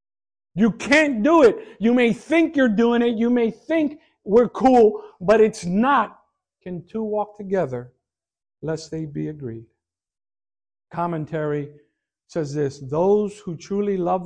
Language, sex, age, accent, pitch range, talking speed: English, male, 50-69, American, 155-235 Hz, 140 wpm